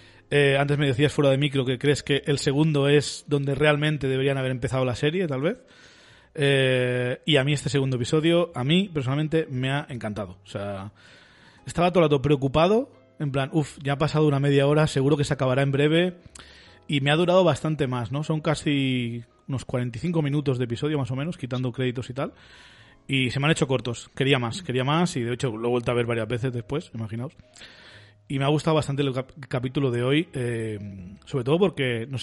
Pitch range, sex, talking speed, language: 125-150 Hz, male, 210 wpm, Spanish